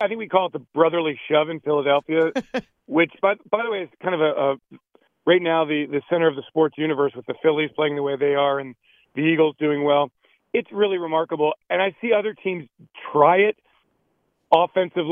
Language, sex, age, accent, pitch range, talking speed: English, male, 40-59, American, 155-195 Hz, 210 wpm